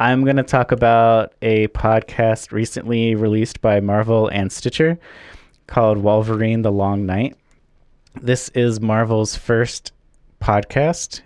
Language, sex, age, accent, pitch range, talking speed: English, male, 20-39, American, 110-135 Hz, 125 wpm